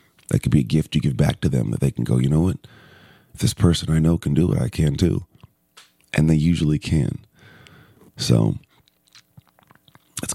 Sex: male